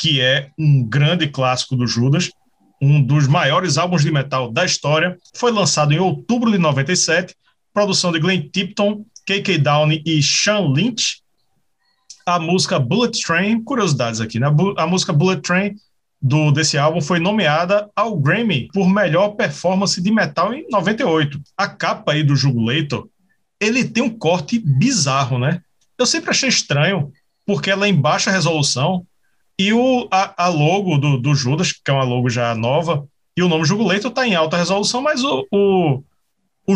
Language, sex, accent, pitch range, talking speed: Portuguese, male, Brazilian, 145-200 Hz, 165 wpm